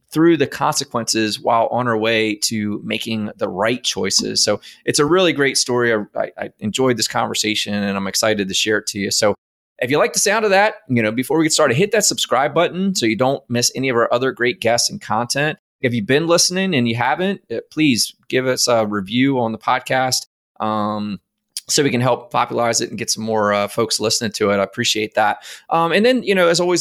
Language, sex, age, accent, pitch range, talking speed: English, male, 20-39, American, 115-150 Hz, 225 wpm